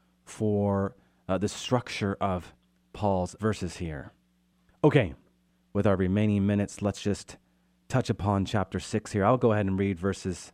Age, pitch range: 40-59, 95-135 Hz